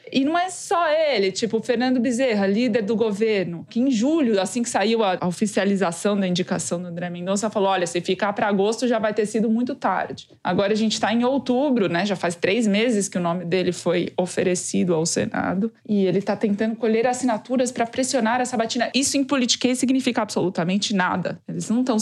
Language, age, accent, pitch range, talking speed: Portuguese, 20-39, Brazilian, 190-245 Hz, 205 wpm